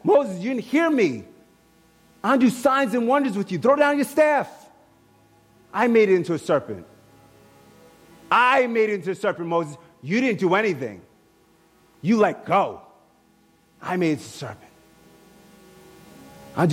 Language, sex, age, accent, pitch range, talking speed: English, male, 30-49, American, 165-235 Hz, 155 wpm